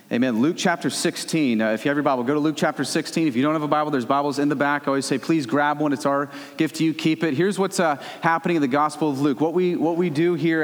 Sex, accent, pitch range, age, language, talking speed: male, American, 145-175 Hz, 30-49, English, 305 wpm